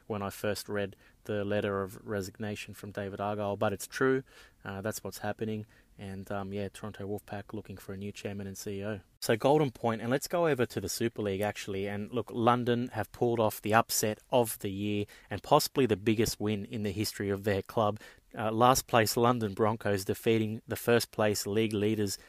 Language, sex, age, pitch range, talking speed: English, male, 20-39, 100-115 Hz, 200 wpm